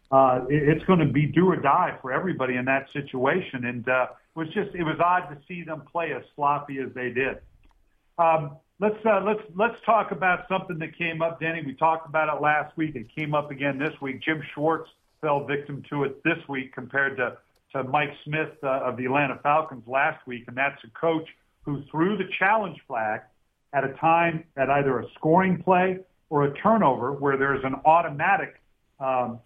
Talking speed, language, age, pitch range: 200 wpm, English, 50-69, 135-170 Hz